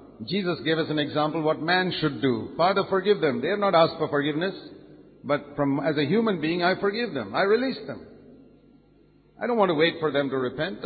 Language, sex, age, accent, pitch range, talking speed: English, male, 50-69, Indian, 135-195 Hz, 215 wpm